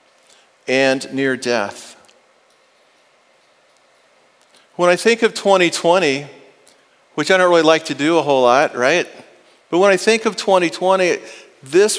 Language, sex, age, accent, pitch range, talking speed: English, male, 40-59, American, 145-185 Hz, 130 wpm